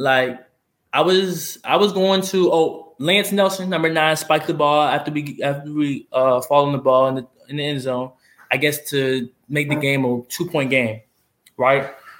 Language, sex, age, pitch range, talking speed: English, male, 20-39, 130-165 Hz, 190 wpm